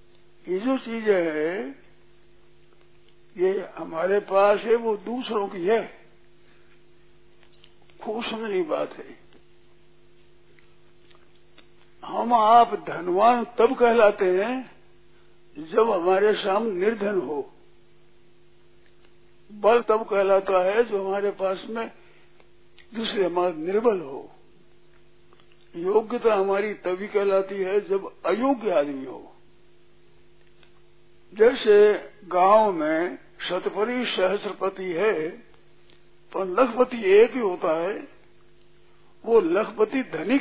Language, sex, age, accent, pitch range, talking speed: Hindi, male, 60-79, native, 195-270 Hz, 90 wpm